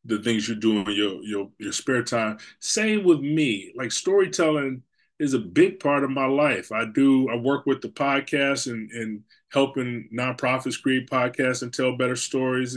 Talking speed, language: 185 wpm, English